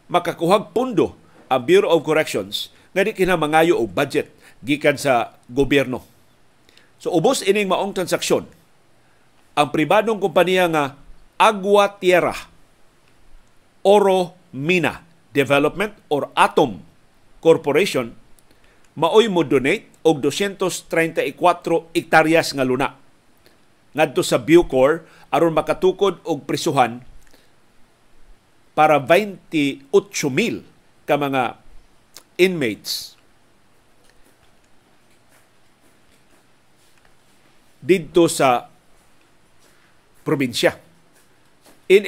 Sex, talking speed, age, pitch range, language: male, 75 wpm, 50-69, 150-185 Hz, Filipino